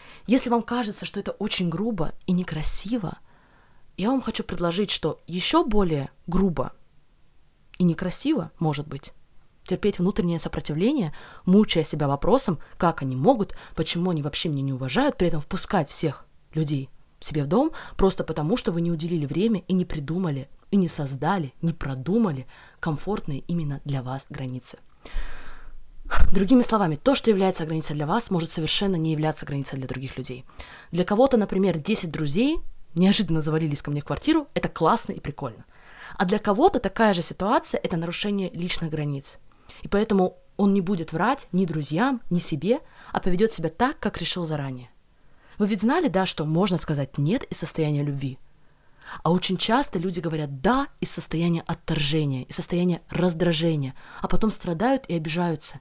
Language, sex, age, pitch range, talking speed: Russian, female, 20-39, 155-200 Hz, 160 wpm